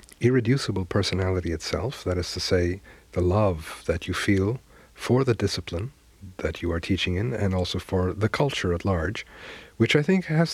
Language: English